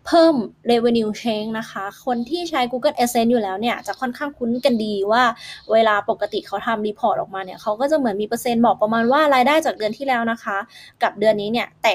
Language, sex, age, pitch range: Thai, female, 20-39, 200-245 Hz